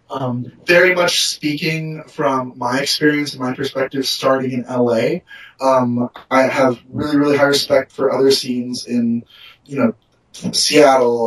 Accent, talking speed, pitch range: American, 145 wpm, 125-155 Hz